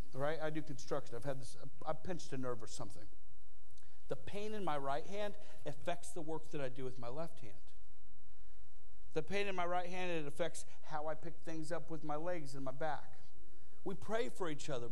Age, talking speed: 40-59, 215 wpm